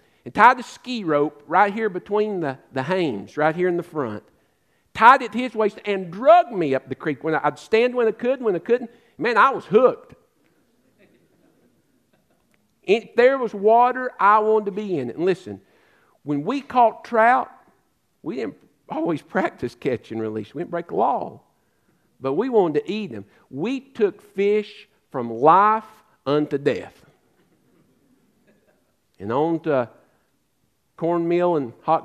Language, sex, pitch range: English, male, 140-200 Hz